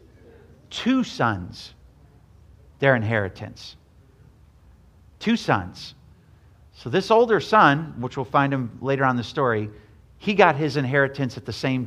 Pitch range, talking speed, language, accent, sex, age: 105-145 Hz, 130 wpm, English, American, male, 50-69